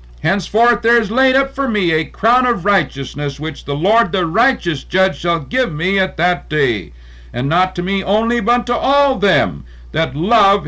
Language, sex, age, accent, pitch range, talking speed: English, male, 60-79, American, 150-215 Hz, 190 wpm